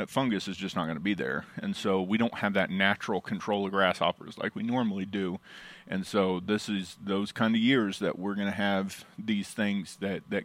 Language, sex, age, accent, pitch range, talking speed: English, male, 30-49, American, 100-145 Hz, 225 wpm